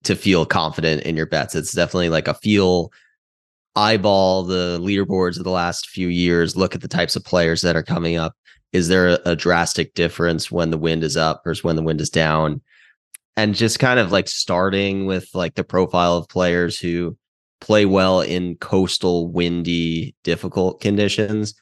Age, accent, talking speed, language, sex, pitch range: 20-39, American, 180 wpm, English, male, 80-95 Hz